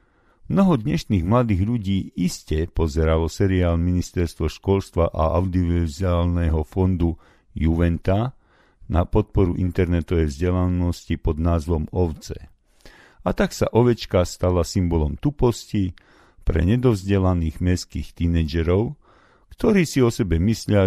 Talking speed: 105 wpm